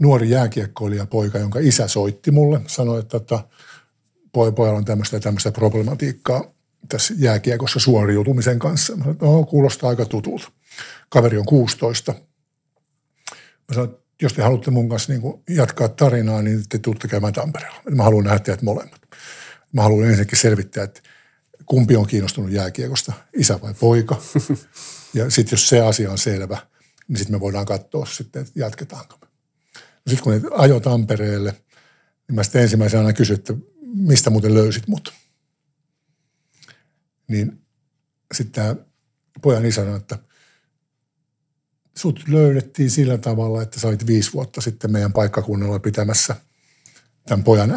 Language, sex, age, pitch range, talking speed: Finnish, male, 50-69, 110-145 Hz, 140 wpm